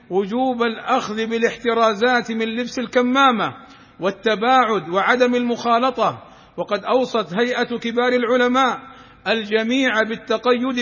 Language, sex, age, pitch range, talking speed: Arabic, male, 50-69, 220-255 Hz, 90 wpm